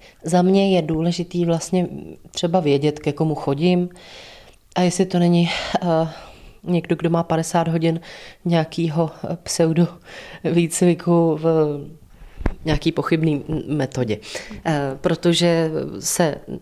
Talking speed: 110 wpm